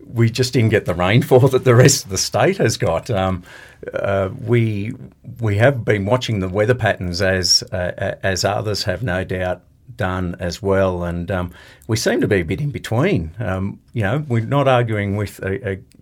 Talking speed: 195 wpm